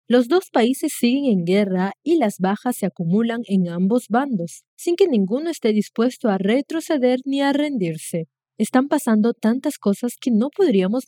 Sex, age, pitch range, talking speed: female, 20-39, 195-270 Hz, 170 wpm